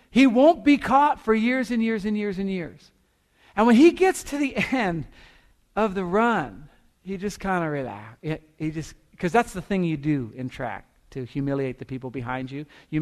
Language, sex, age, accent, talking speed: English, male, 50-69, American, 195 wpm